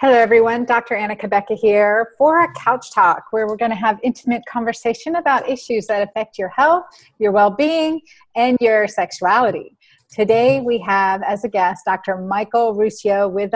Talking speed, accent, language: 170 wpm, American, English